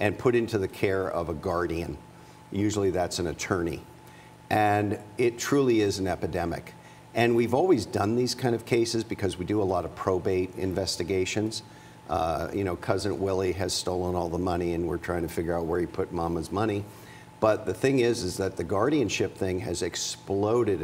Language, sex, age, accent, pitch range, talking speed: English, male, 50-69, American, 90-110 Hz, 190 wpm